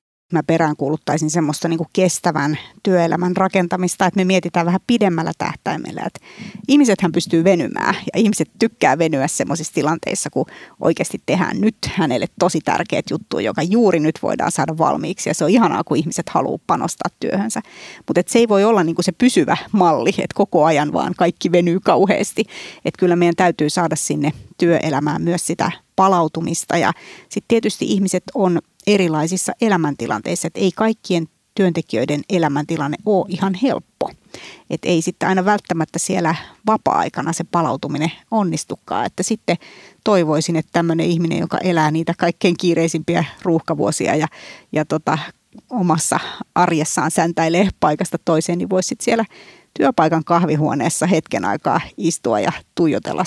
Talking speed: 140 wpm